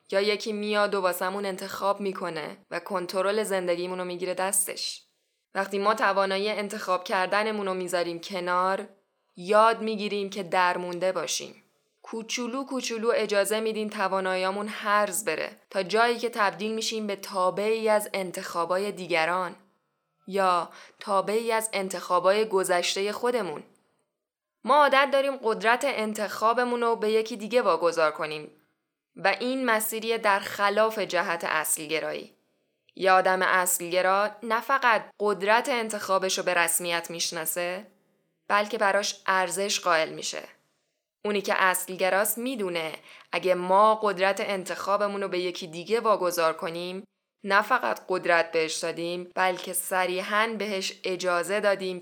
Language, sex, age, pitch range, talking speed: Persian, female, 10-29, 180-215 Hz, 120 wpm